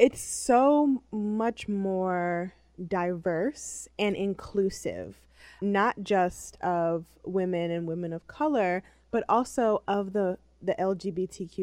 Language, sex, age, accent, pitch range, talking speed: English, female, 20-39, American, 180-215 Hz, 110 wpm